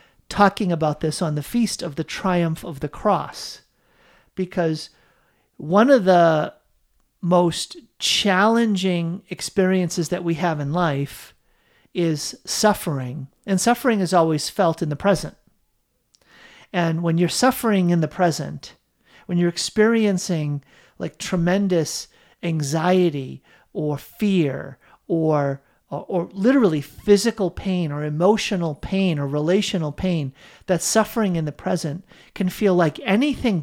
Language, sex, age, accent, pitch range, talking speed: English, male, 50-69, American, 155-195 Hz, 125 wpm